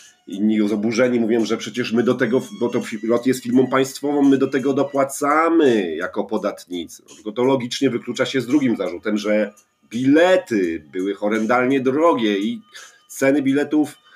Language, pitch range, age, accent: Polish, 105-150 Hz, 40-59, native